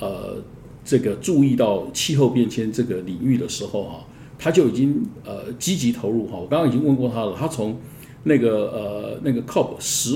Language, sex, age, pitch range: Chinese, male, 50-69, 120-145 Hz